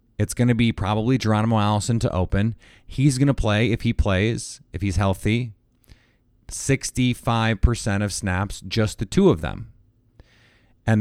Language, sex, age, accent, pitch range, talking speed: English, male, 30-49, American, 95-120 Hz, 155 wpm